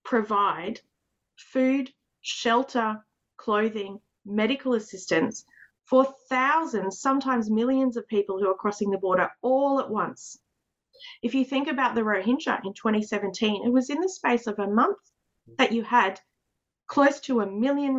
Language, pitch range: English, 200-260 Hz